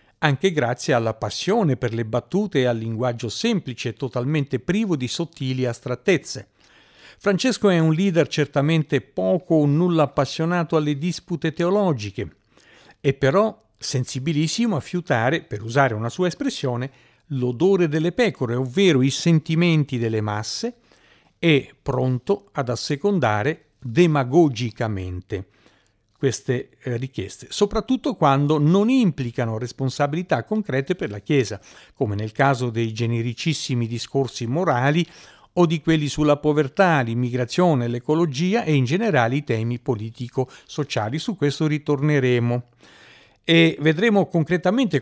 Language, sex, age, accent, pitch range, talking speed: Italian, male, 50-69, native, 120-165 Hz, 120 wpm